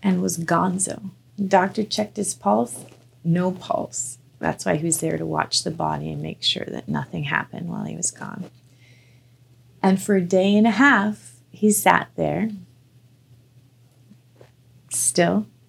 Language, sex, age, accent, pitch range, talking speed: English, female, 30-49, American, 125-195 Hz, 155 wpm